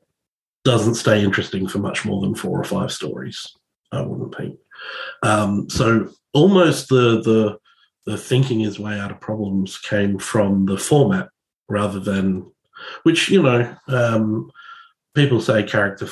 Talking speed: 145 wpm